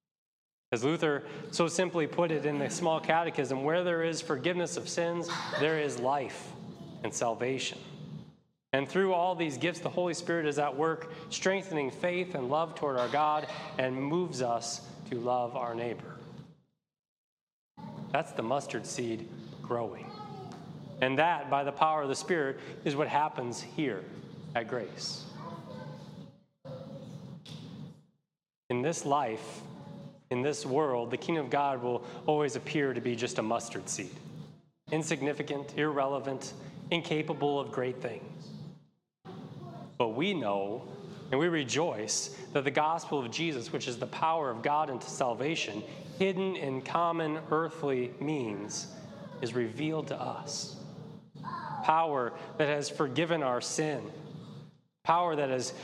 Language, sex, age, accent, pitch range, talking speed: English, male, 30-49, American, 135-165 Hz, 135 wpm